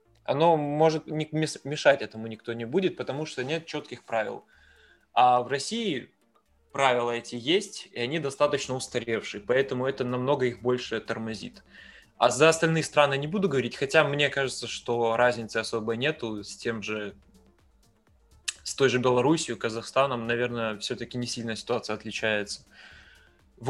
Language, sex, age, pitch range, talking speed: Russian, male, 20-39, 120-140 Hz, 145 wpm